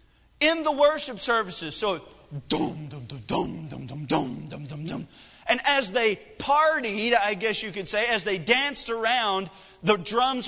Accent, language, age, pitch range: American, English, 40-59, 180-255 Hz